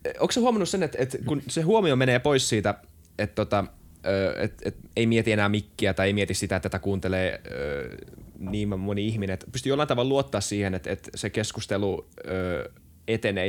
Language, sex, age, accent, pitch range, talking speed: Finnish, male, 20-39, native, 105-125 Hz, 170 wpm